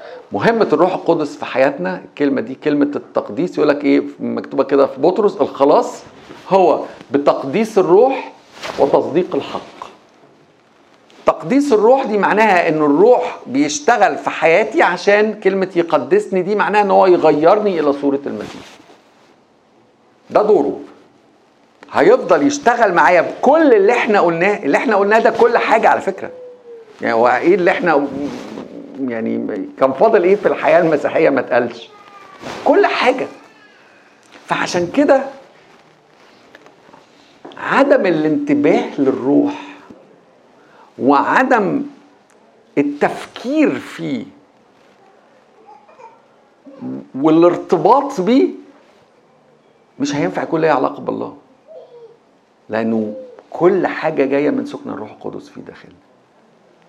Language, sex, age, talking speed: Arabic, male, 50-69, 105 wpm